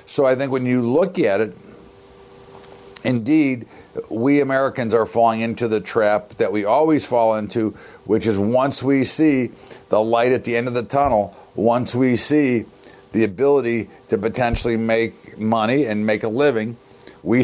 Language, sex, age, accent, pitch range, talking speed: English, male, 50-69, American, 110-130 Hz, 165 wpm